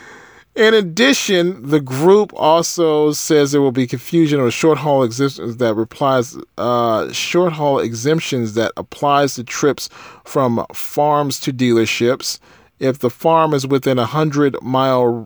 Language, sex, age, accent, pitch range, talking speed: English, male, 40-59, American, 135-180 Hz, 115 wpm